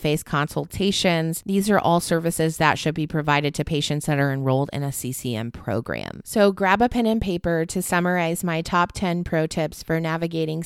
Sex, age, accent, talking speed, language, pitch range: female, 30-49, American, 190 wpm, English, 145-175 Hz